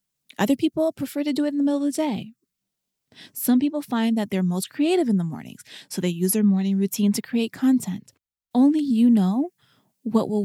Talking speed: 205 wpm